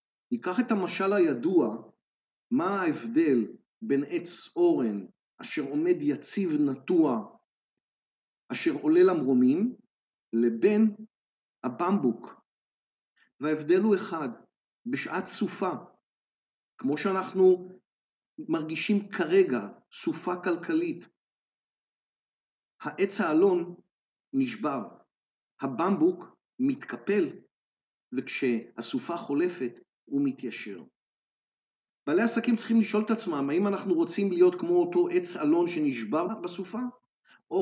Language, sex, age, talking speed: Hebrew, male, 50-69, 85 wpm